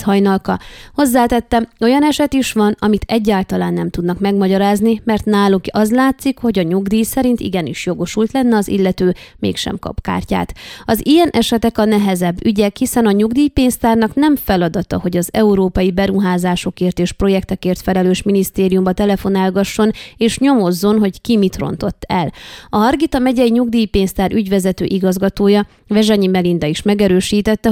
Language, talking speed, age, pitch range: Hungarian, 140 wpm, 20-39, 185-225 Hz